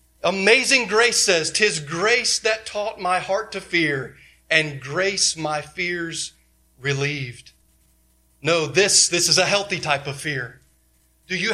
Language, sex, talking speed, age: English, male, 140 wpm, 30-49